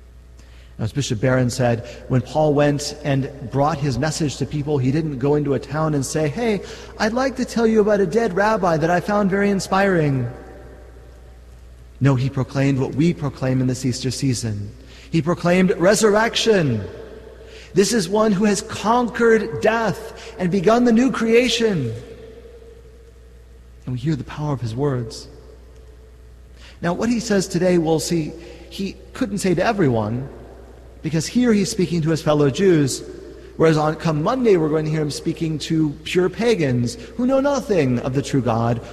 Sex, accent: male, American